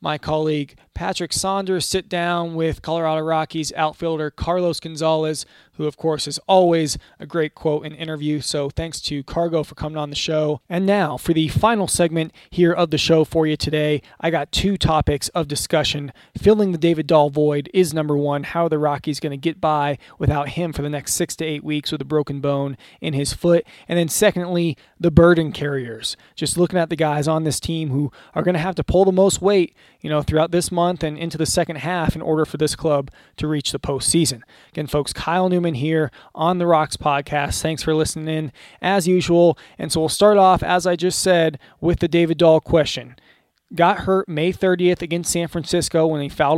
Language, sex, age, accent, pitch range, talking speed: English, male, 20-39, American, 150-175 Hz, 210 wpm